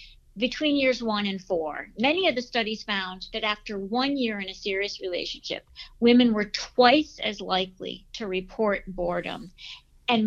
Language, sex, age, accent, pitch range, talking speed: English, female, 50-69, American, 195-260 Hz, 160 wpm